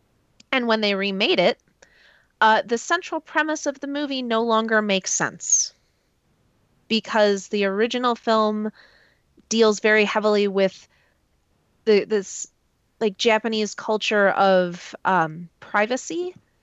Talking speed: 115 wpm